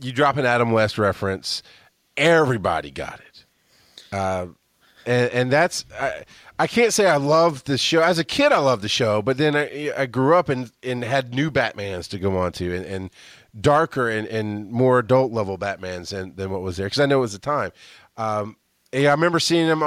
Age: 30-49